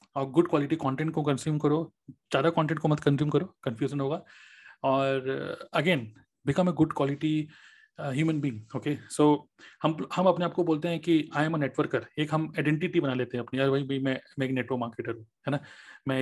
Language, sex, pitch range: Hindi, male, 135-165 Hz